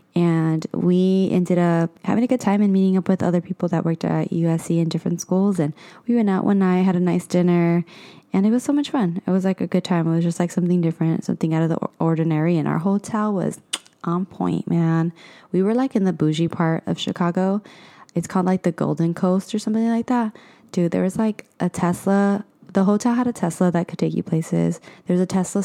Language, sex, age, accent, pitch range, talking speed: English, female, 20-39, American, 170-200 Hz, 230 wpm